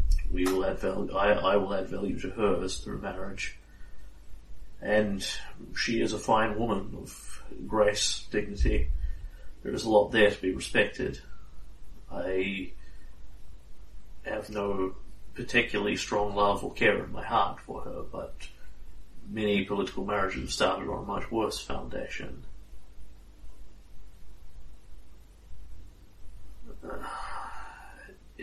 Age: 30-49